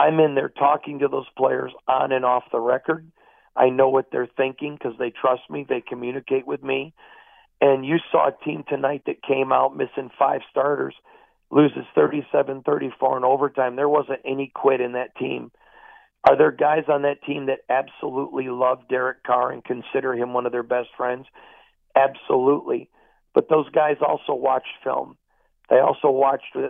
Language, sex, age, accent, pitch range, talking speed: English, male, 50-69, American, 130-145 Hz, 175 wpm